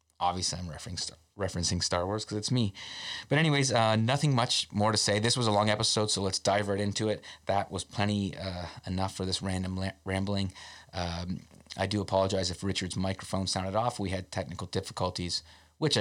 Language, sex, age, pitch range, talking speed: English, male, 30-49, 90-105 Hz, 190 wpm